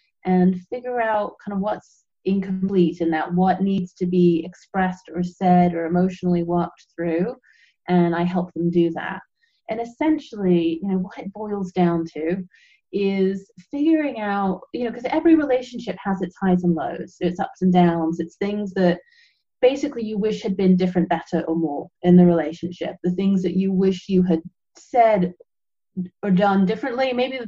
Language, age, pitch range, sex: English, 30-49, 175-205 Hz, female